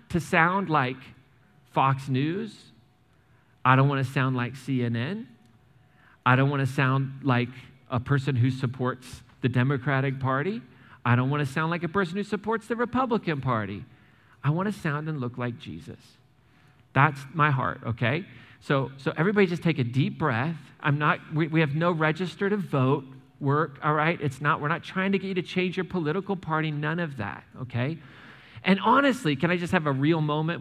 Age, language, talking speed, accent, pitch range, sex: 40-59, English, 190 wpm, American, 125-155 Hz, male